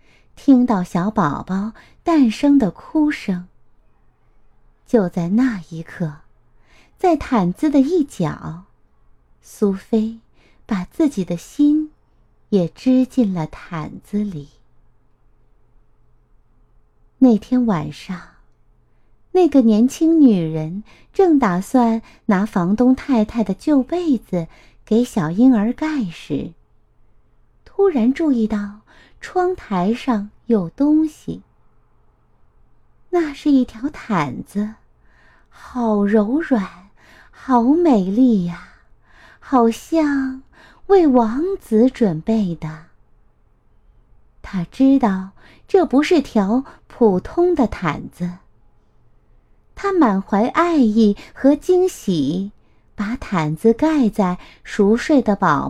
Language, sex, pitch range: Chinese, female, 185-275 Hz